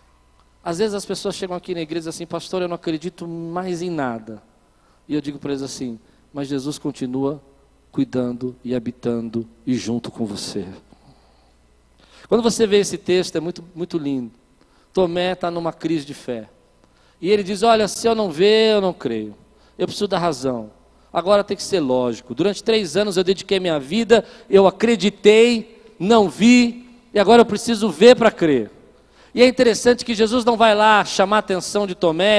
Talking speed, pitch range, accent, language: 185 wpm, 180-255 Hz, Brazilian, Portuguese